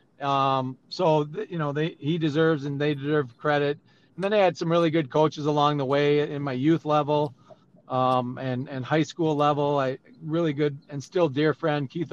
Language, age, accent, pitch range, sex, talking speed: English, 40-59, American, 135-155 Hz, male, 205 wpm